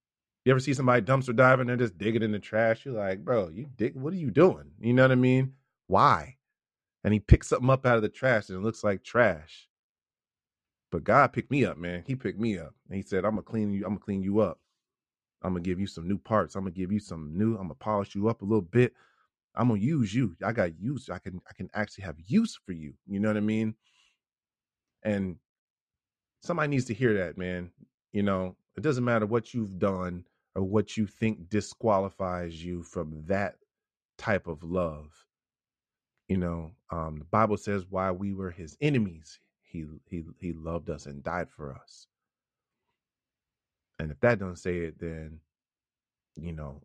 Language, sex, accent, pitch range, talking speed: English, male, American, 90-120 Hz, 205 wpm